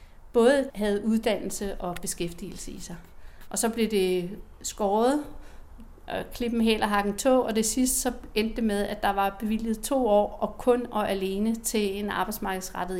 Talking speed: 170 wpm